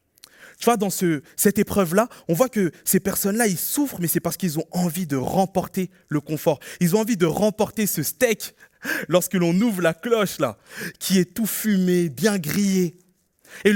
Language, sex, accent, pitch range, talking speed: French, male, French, 155-210 Hz, 190 wpm